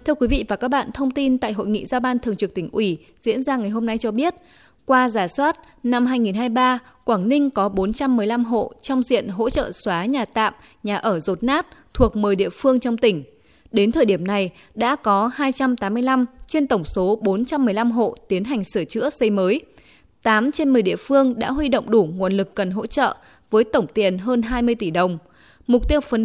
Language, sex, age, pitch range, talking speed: Vietnamese, female, 10-29, 200-260 Hz, 215 wpm